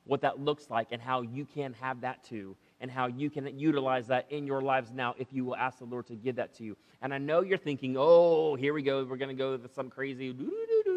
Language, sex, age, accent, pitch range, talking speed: English, male, 30-49, American, 110-155 Hz, 275 wpm